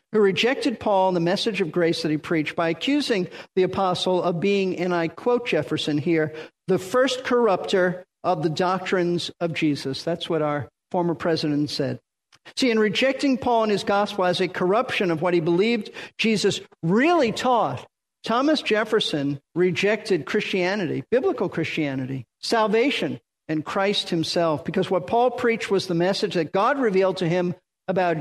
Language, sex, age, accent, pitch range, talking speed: English, male, 50-69, American, 175-225 Hz, 160 wpm